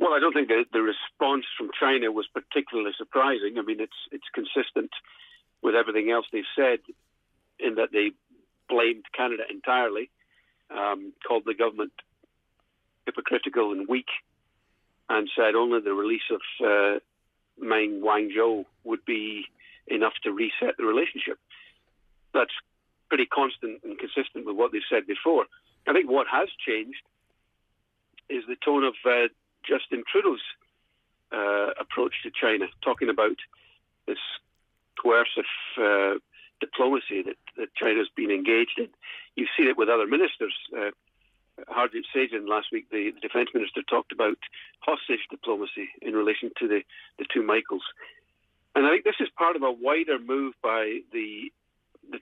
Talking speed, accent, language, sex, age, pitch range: 145 wpm, British, English, male, 50-69, 310-415 Hz